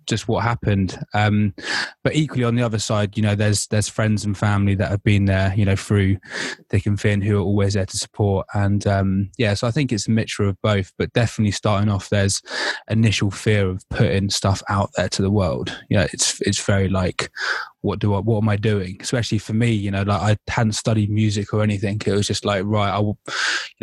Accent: British